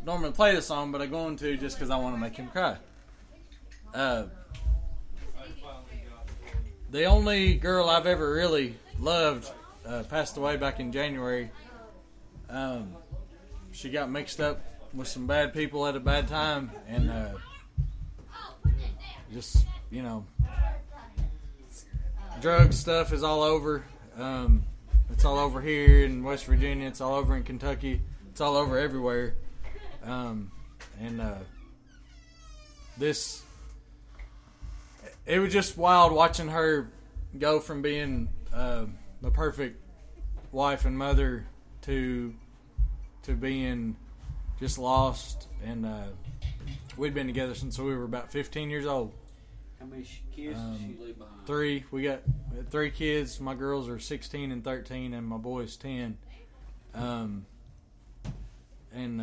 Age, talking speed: 20-39, 130 wpm